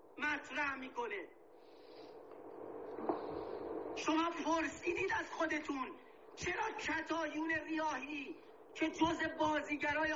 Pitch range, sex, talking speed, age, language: 295-445 Hz, male, 70 wpm, 40-59, Persian